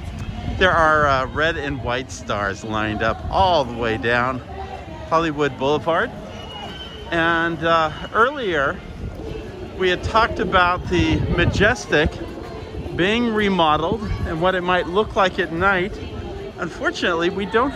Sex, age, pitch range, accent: male, 50-69, 145-195 Hz, American